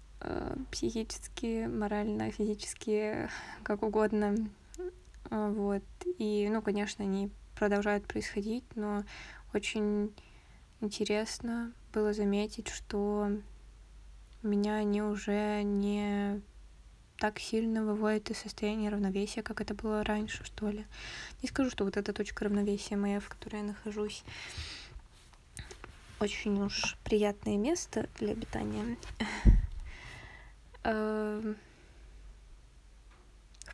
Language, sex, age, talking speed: Russian, female, 20-39, 95 wpm